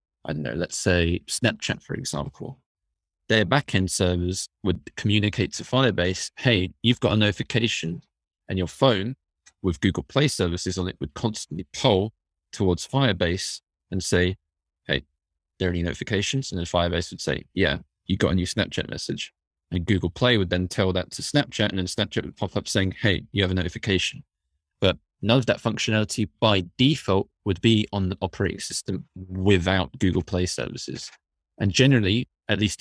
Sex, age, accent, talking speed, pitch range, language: male, 20-39, British, 175 wpm, 90-115 Hz, English